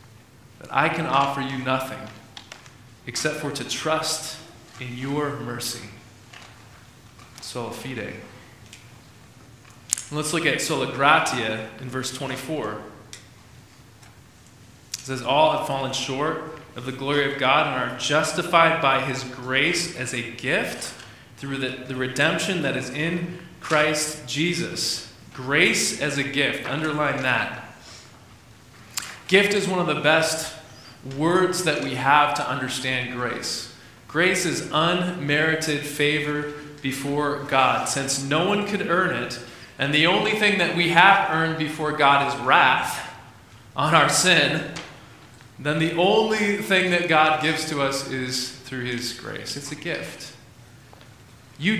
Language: English